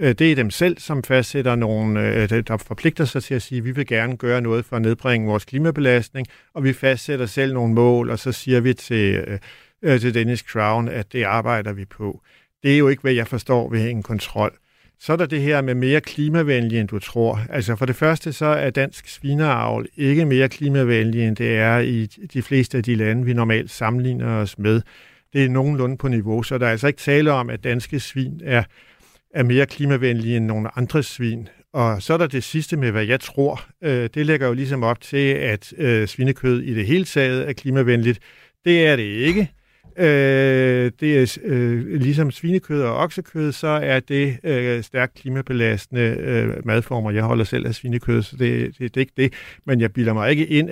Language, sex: Danish, male